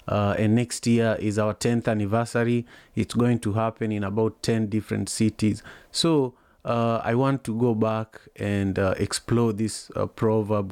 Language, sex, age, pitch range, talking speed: English, male, 30-49, 105-120 Hz, 170 wpm